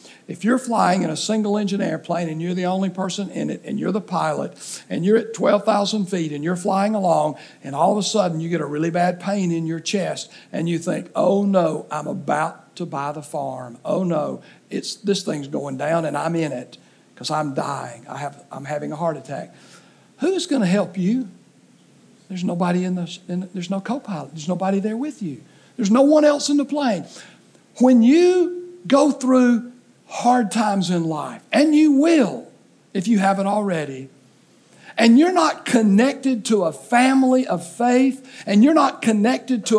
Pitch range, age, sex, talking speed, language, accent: 180-260 Hz, 60-79, male, 195 wpm, English, American